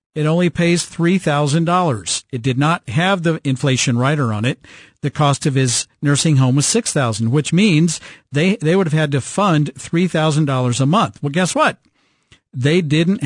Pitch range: 135-170 Hz